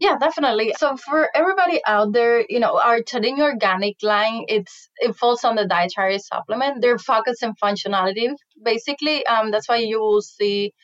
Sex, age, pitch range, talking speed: female, 20-39, 205-260 Hz, 170 wpm